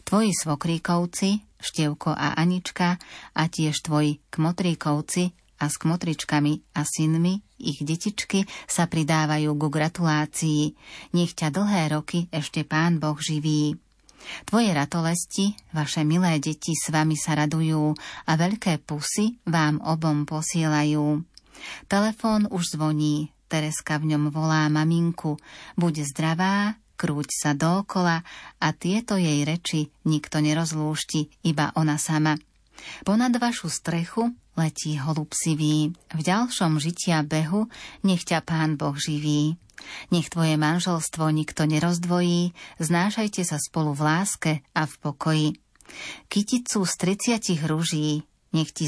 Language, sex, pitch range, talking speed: Slovak, female, 155-175 Hz, 120 wpm